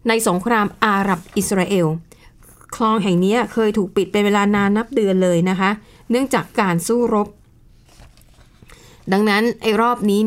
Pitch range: 185-235 Hz